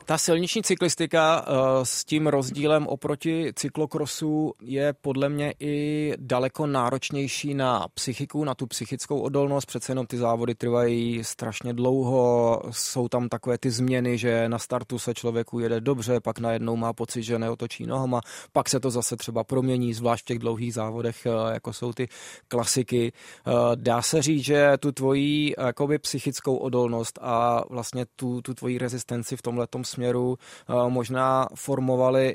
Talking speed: 150 wpm